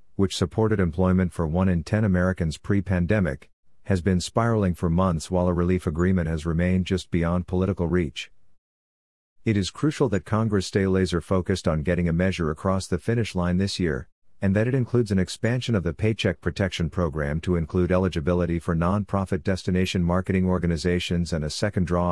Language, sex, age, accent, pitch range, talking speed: English, male, 50-69, American, 85-100 Hz, 175 wpm